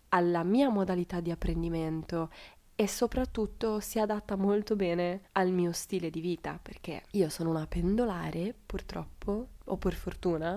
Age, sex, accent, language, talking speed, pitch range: 20-39, female, native, Italian, 140 wpm, 165-205 Hz